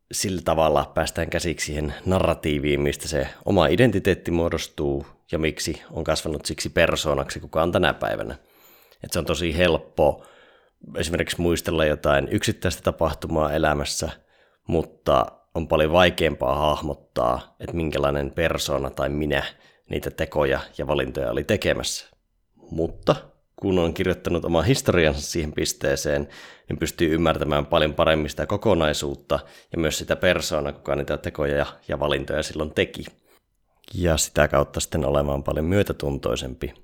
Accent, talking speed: native, 130 wpm